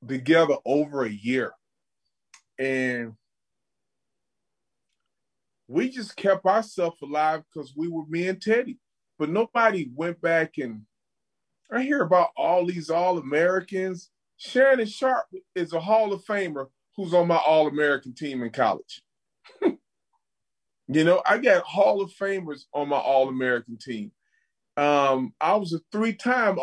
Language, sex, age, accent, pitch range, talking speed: English, male, 30-49, American, 155-245 Hz, 130 wpm